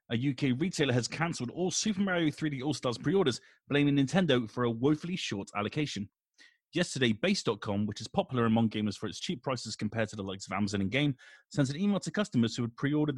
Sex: male